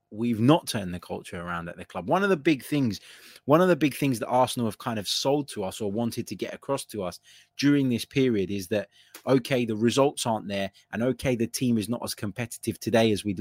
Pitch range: 100-125 Hz